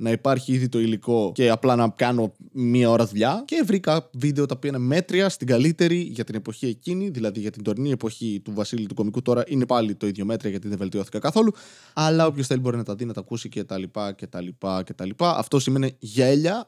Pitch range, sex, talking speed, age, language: 105-140 Hz, male, 235 wpm, 20-39, Greek